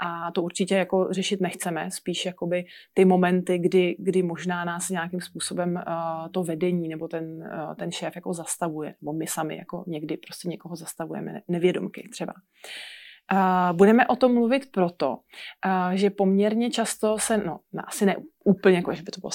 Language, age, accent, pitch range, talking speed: Czech, 20-39, native, 175-210 Hz, 175 wpm